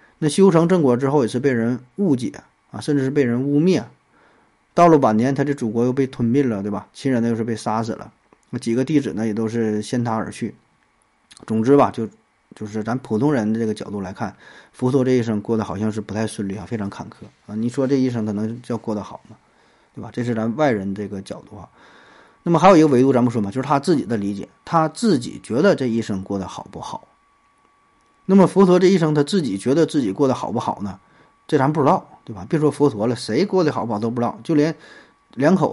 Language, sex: Chinese, male